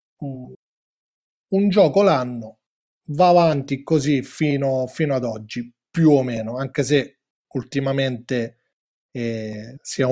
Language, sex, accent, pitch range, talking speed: Italian, male, native, 130-160 Hz, 105 wpm